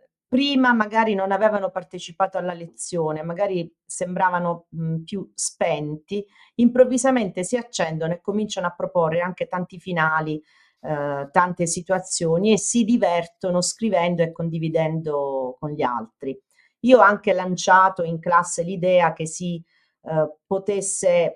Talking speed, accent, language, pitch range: 125 wpm, native, Italian, 155-190 Hz